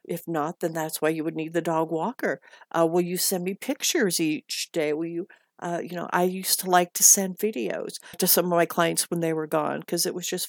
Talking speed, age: 250 wpm, 50-69